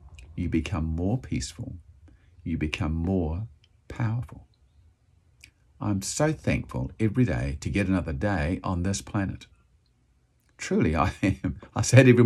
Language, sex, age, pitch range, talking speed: English, male, 50-69, 80-115 Hz, 130 wpm